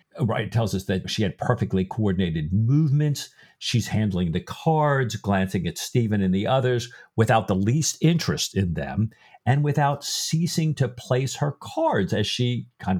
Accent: American